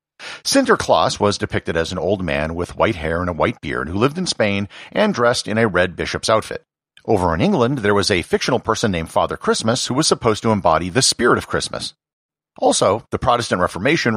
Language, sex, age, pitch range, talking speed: English, male, 50-69, 90-140 Hz, 210 wpm